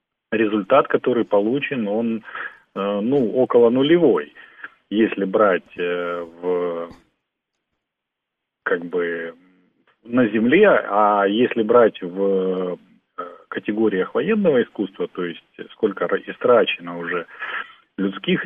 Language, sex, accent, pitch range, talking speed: Russian, male, native, 90-150 Hz, 90 wpm